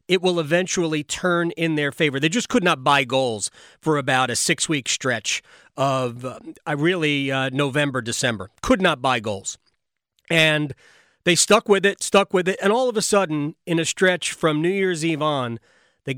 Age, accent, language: 40-59, American, English